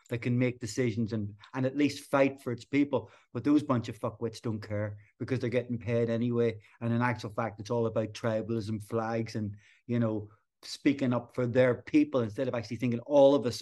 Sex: male